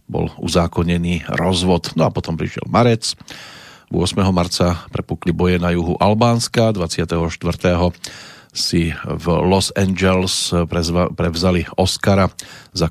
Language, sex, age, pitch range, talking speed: Slovak, male, 40-59, 85-105 Hz, 110 wpm